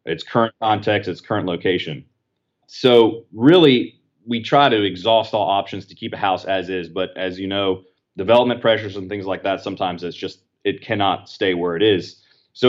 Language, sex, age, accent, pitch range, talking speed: English, male, 30-49, American, 95-110 Hz, 190 wpm